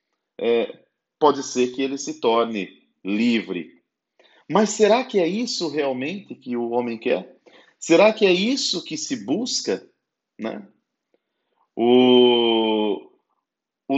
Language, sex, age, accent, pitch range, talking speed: Portuguese, male, 40-59, Brazilian, 130-195 Hz, 120 wpm